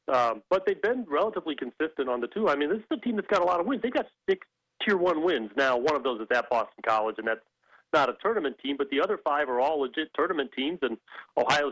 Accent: American